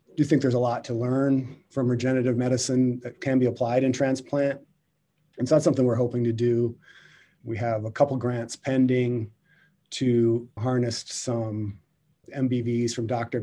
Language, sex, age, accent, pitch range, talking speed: English, male, 30-49, American, 120-135 Hz, 160 wpm